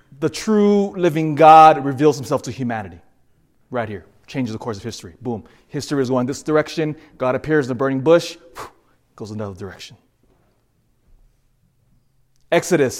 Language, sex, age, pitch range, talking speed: English, male, 20-39, 125-160 Hz, 145 wpm